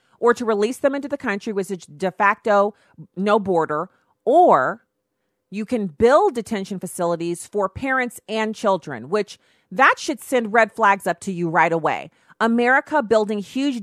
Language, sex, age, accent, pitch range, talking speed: English, female, 40-59, American, 190-235 Hz, 160 wpm